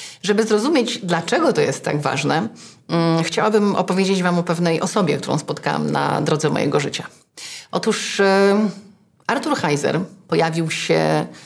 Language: Polish